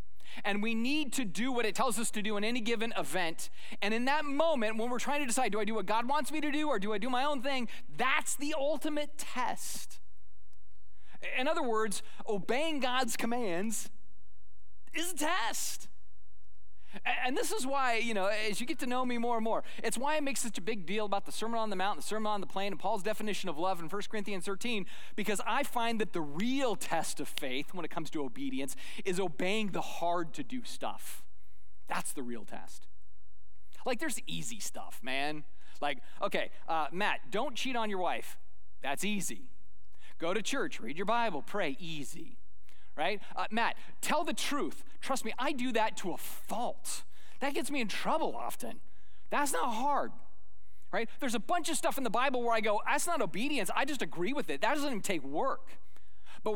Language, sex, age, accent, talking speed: English, male, 30-49, American, 205 wpm